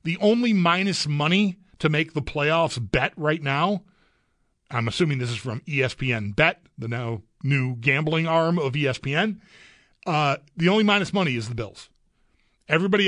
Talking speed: 155 wpm